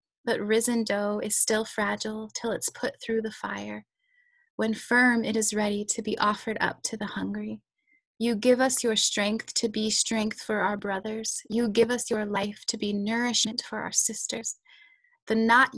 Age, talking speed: 20-39, 185 wpm